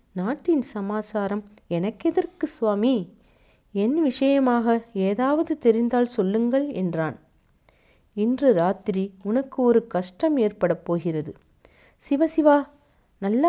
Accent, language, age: native, Tamil, 40-59